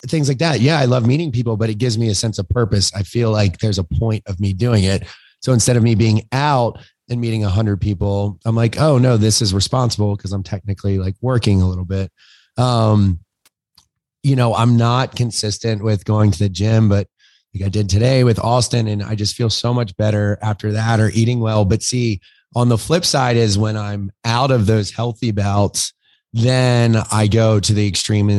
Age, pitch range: 30-49, 100-120 Hz